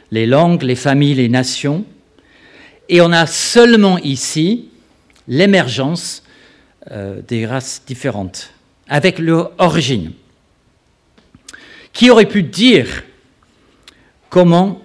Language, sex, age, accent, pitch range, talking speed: French, male, 50-69, French, 120-175 Hz, 95 wpm